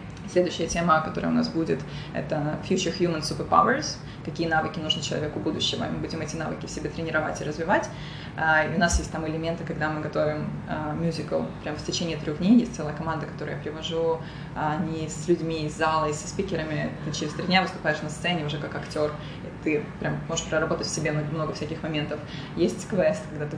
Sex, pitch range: female, 155-175 Hz